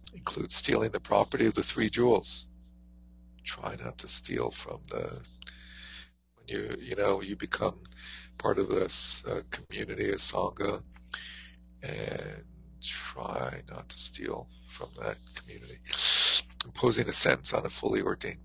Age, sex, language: 50-69, male, English